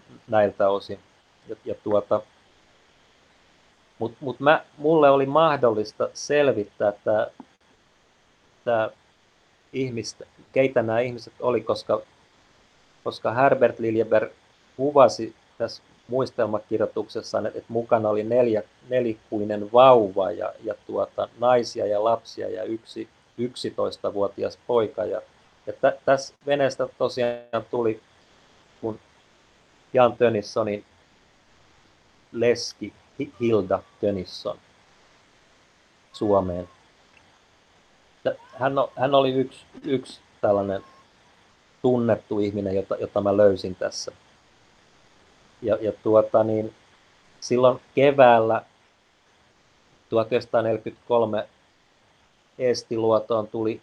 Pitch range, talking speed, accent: 105-125 Hz, 80 wpm, native